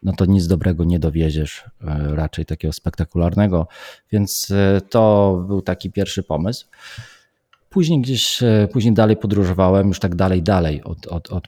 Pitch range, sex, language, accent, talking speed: 80-100 Hz, male, Polish, native, 140 wpm